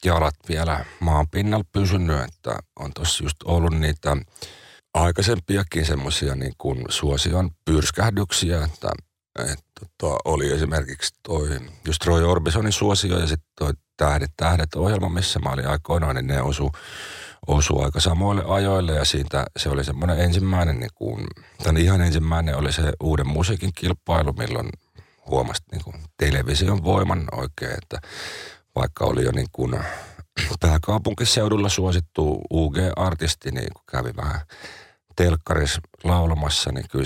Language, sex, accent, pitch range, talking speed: Finnish, male, native, 75-90 Hz, 130 wpm